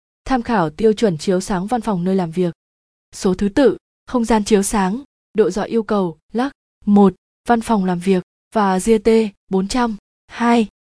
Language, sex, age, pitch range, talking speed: Vietnamese, female, 20-39, 190-230 Hz, 185 wpm